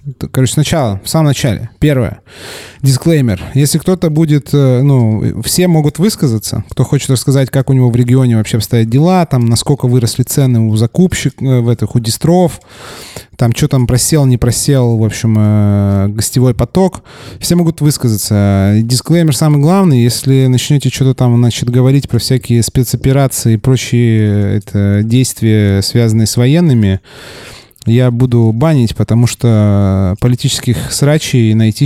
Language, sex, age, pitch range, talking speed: Russian, male, 20-39, 110-135 Hz, 140 wpm